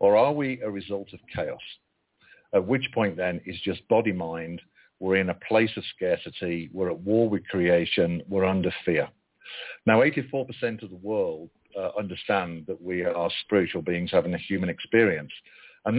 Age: 50-69